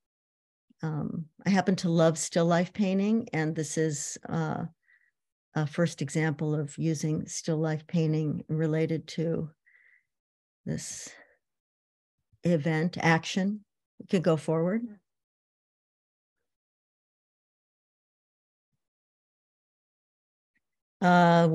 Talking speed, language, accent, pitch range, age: 85 wpm, English, American, 160-180 Hz, 50-69